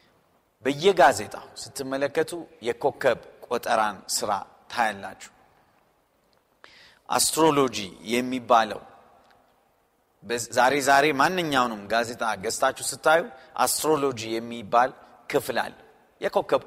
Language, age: Amharic, 40-59